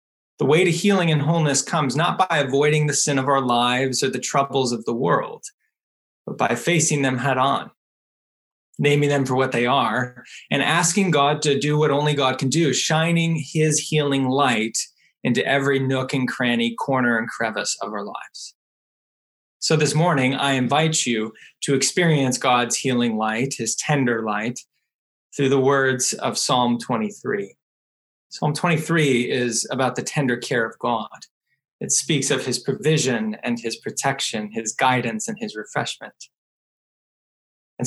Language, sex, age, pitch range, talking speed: English, male, 20-39, 125-160 Hz, 160 wpm